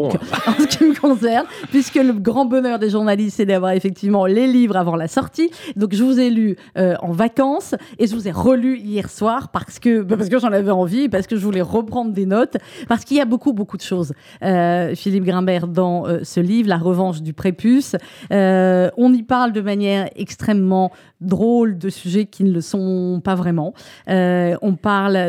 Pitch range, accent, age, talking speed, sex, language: 180-230 Hz, French, 30-49, 210 wpm, female, French